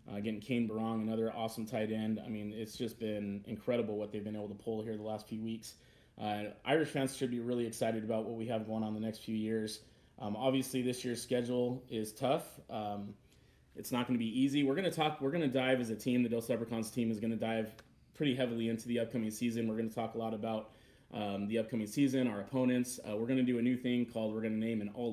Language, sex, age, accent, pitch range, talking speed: English, male, 30-49, American, 110-130 Hz, 260 wpm